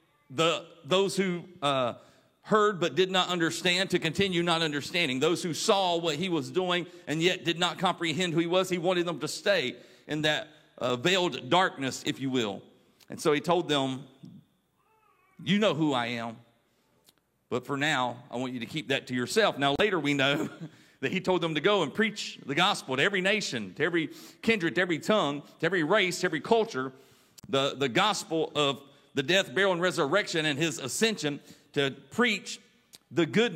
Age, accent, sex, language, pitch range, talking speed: 40-59, American, male, English, 145-185 Hz, 190 wpm